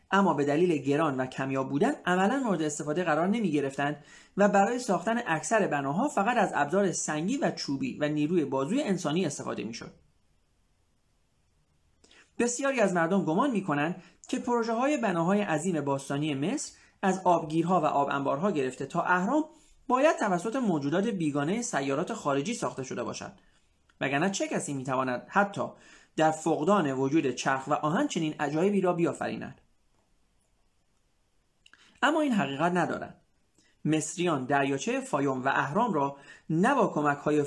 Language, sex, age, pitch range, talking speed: Persian, male, 30-49, 140-200 Hz, 140 wpm